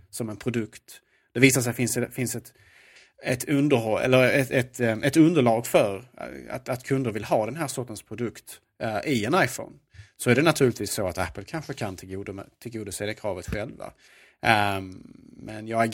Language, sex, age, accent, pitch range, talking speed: Swedish, male, 30-49, Norwegian, 105-130 Hz, 170 wpm